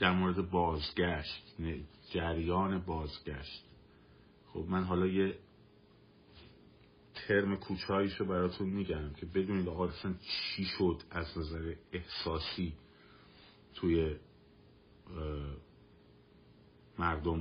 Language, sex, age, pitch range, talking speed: Persian, male, 50-69, 80-100 Hz, 80 wpm